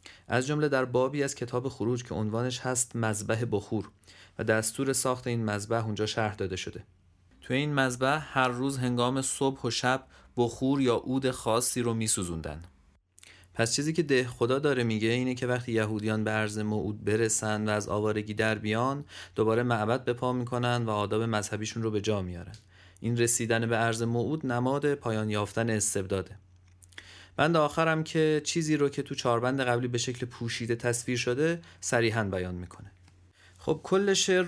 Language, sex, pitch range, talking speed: Persian, male, 105-135 Hz, 170 wpm